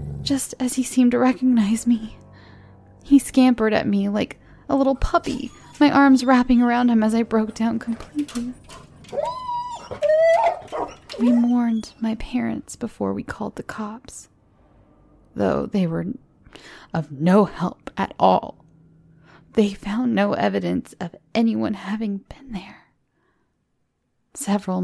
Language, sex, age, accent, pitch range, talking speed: English, female, 10-29, American, 195-250 Hz, 125 wpm